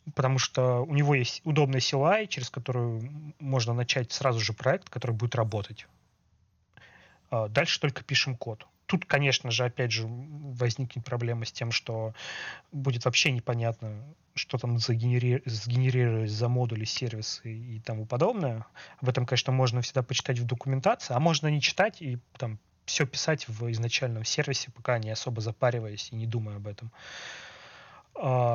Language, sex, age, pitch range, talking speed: Russian, male, 30-49, 115-135 Hz, 150 wpm